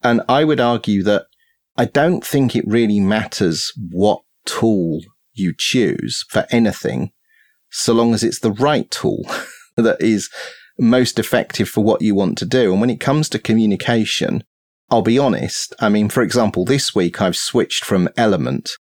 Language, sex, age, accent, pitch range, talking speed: English, male, 30-49, British, 90-115 Hz, 170 wpm